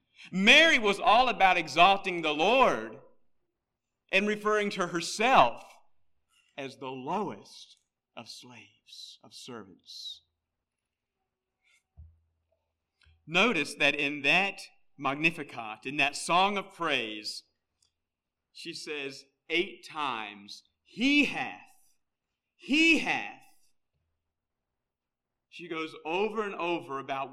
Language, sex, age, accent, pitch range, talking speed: English, male, 50-69, American, 135-215 Hz, 90 wpm